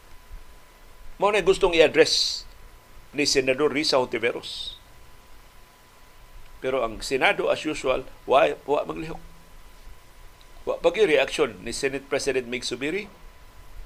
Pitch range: 135-190 Hz